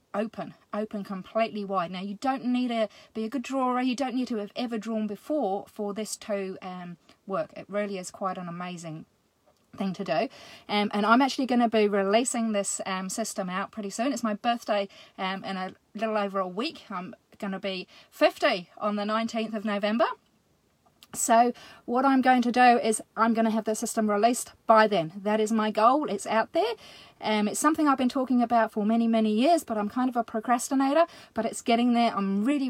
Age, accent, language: 40-59, British, English